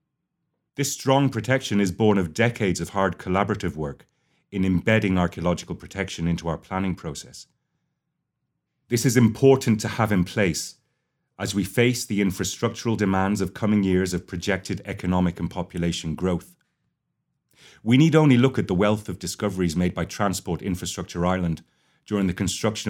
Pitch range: 85-110 Hz